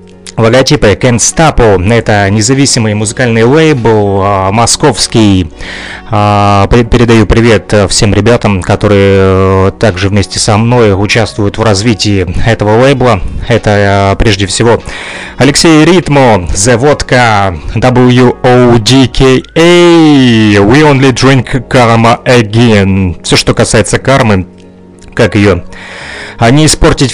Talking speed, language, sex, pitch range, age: 95 wpm, Russian, male, 100-125 Hz, 30-49